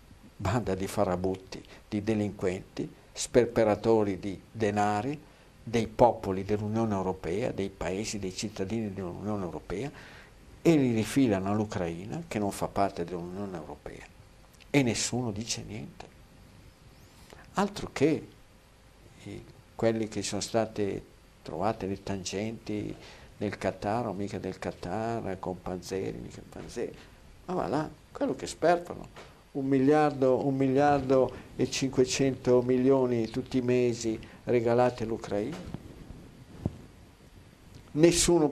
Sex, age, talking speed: male, 50-69, 105 wpm